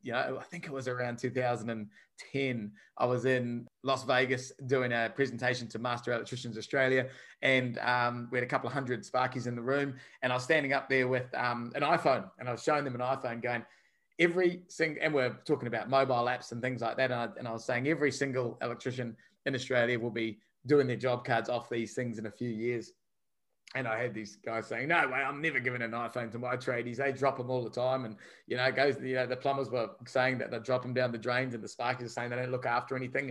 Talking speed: 240 wpm